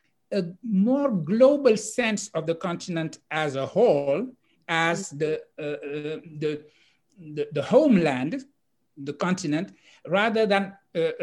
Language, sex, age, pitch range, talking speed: English, male, 60-79, 150-205 Hz, 125 wpm